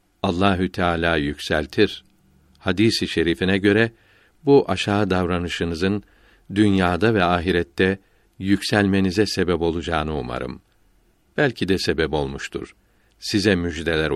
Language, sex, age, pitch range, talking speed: Turkish, male, 60-79, 90-105 Hz, 95 wpm